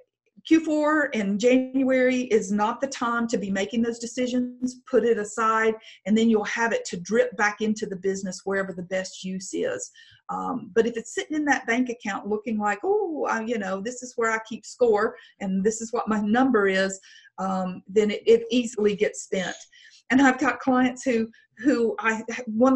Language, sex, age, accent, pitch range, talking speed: English, female, 40-59, American, 210-260 Hz, 190 wpm